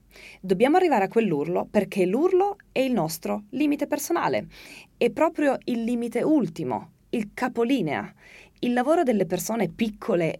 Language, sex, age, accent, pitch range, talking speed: Italian, female, 20-39, native, 170-270 Hz, 135 wpm